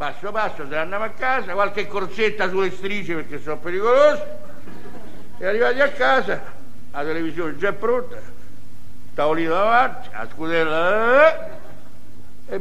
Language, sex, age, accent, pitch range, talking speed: Italian, male, 60-79, native, 165-210 Hz, 130 wpm